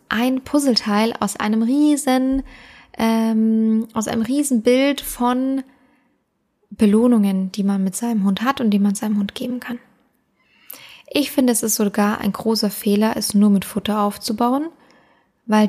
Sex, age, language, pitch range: female, 10-29, German, 205-250 Hz